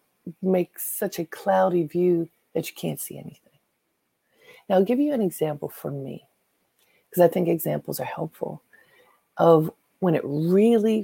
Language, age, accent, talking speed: English, 50-69, American, 150 wpm